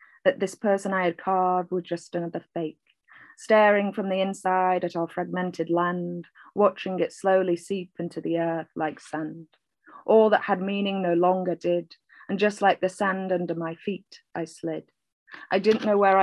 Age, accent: 30-49, British